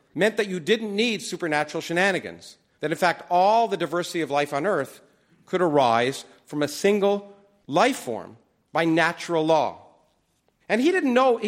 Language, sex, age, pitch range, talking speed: English, male, 50-69, 165-225 Hz, 160 wpm